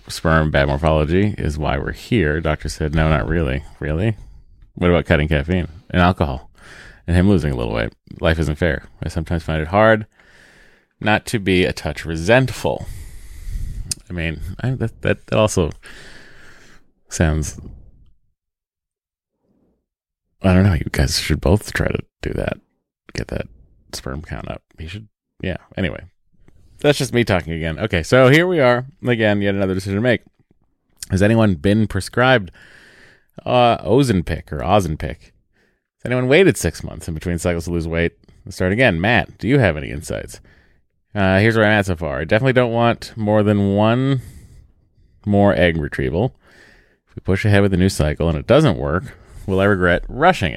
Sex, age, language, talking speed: male, 30-49, English, 170 wpm